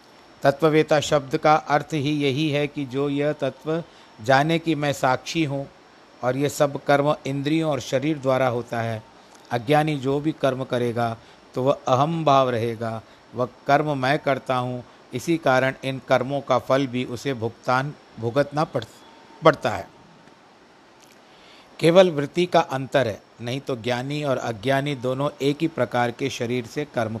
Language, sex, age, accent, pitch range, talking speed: Hindi, male, 50-69, native, 125-145 Hz, 155 wpm